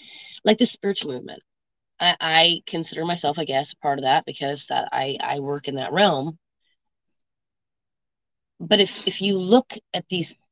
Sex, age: female, 30-49